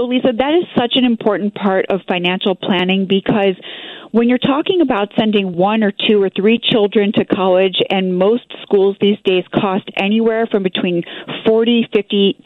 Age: 40-59